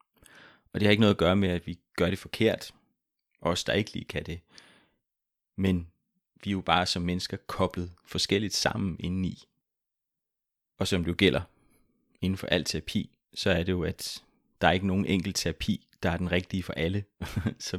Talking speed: 195 wpm